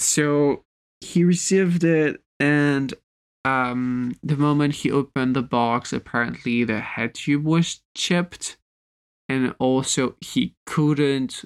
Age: 20-39